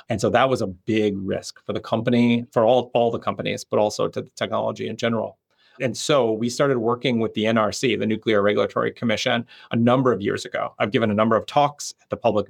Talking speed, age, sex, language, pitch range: 230 wpm, 30-49, male, English, 105-130 Hz